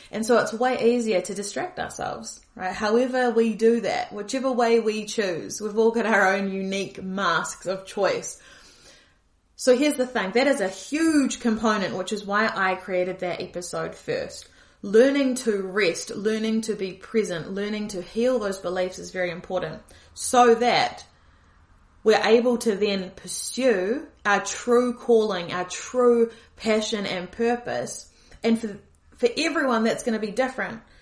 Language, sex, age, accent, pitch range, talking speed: English, female, 30-49, Australian, 195-250 Hz, 160 wpm